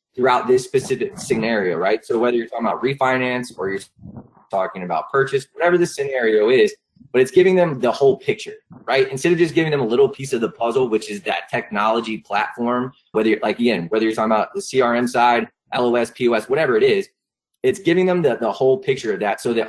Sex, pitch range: male, 115-180 Hz